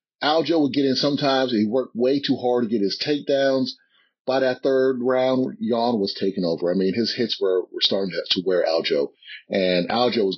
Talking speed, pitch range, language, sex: 200 wpm, 105-150 Hz, English, male